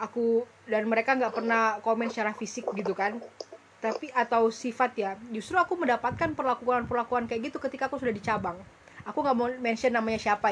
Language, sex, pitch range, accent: Indonesian, female, 215-265 Hz, native